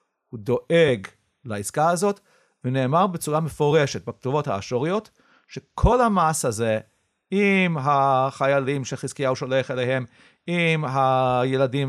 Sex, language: male, English